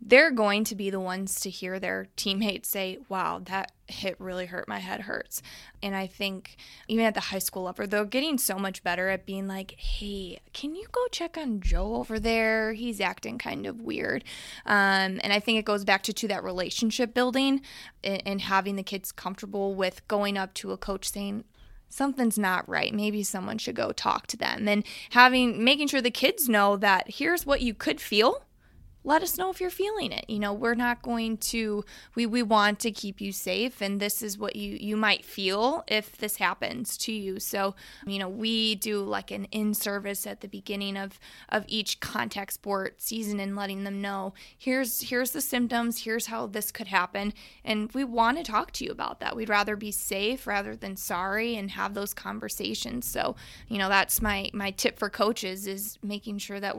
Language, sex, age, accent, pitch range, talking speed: English, female, 20-39, American, 195-230 Hz, 205 wpm